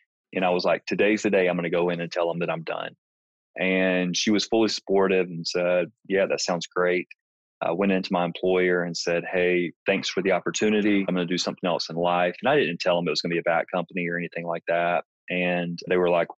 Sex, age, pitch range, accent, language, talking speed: male, 30-49, 85-95 Hz, American, English, 255 wpm